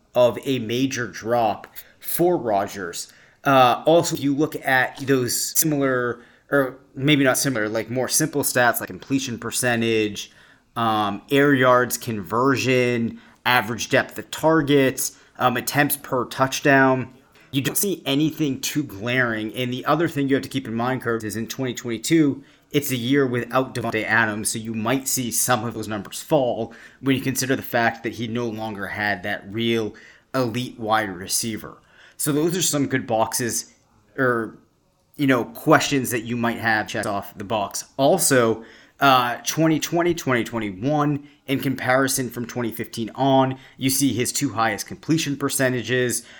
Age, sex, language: 30-49, male, English